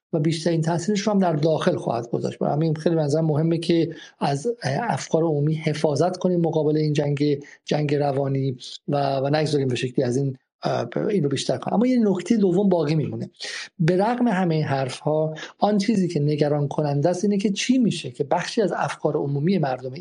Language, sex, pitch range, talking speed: Persian, male, 140-170 Hz, 190 wpm